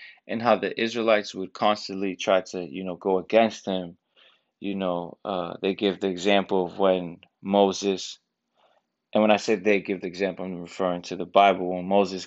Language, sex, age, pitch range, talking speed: English, male, 20-39, 90-105 Hz, 185 wpm